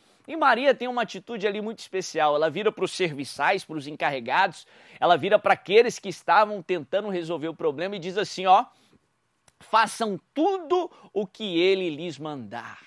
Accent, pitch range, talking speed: Brazilian, 170-230 Hz, 175 wpm